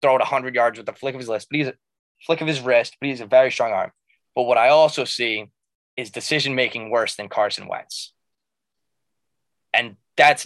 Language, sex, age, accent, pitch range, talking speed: English, male, 20-39, American, 115-150 Hz, 210 wpm